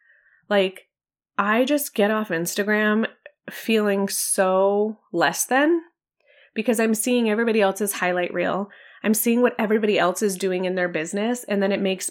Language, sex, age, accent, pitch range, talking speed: English, female, 20-39, American, 195-240 Hz, 155 wpm